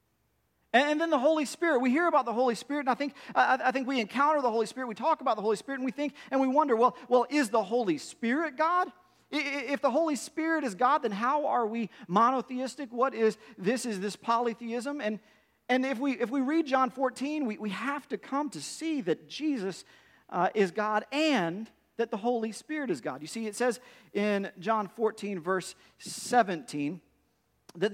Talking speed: 205 wpm